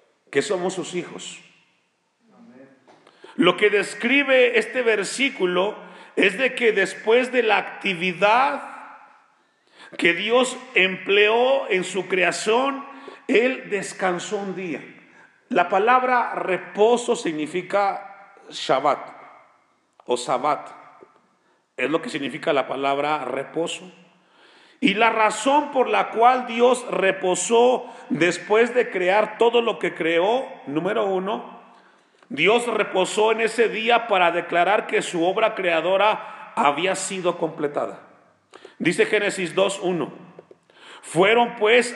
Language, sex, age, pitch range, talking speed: Spanish, male, 40-59, 180-235 Hz, 110 wpm